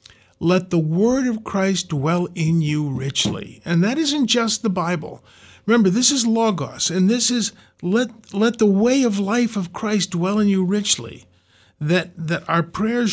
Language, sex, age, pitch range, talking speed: English, male, 50-69, 135-195 Hz, 175 wpm